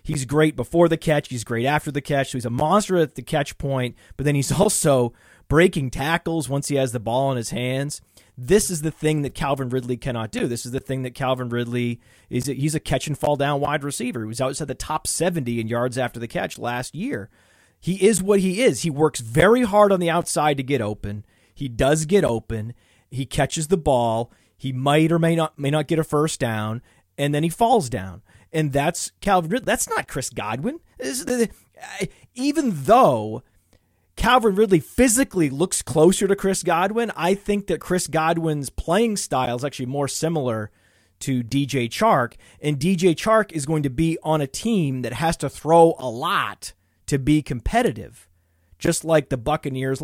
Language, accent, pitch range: English, American, 125-170 Hz